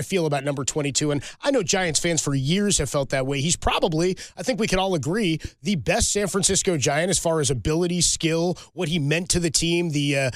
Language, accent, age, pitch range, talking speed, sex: English, American, 20-39, 145-180 Hz, 245 wpm, male